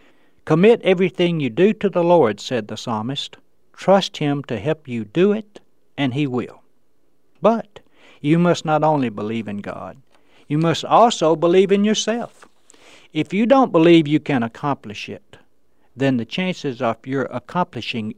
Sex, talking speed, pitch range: male, 160 wpm, 120-170 Hz